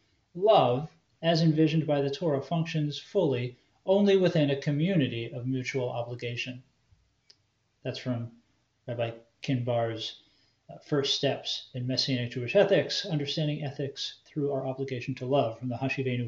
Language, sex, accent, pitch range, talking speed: English, male, American, 130-170 Hz, 135 wpm